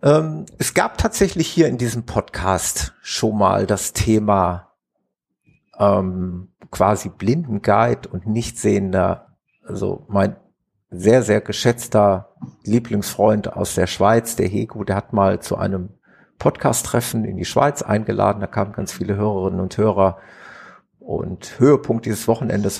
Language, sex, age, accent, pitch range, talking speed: German, male, 50-69, German, 100-125 Hz, 130 wpm